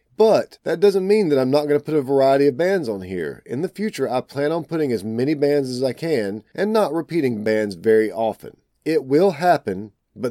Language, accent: English, American